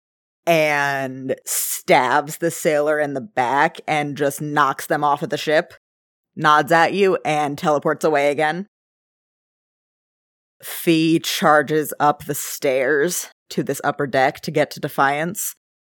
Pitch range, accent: 135-150 Hz, American